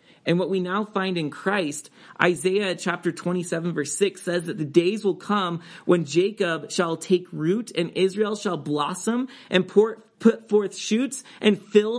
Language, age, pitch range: English, 30-49, 155-215 Hz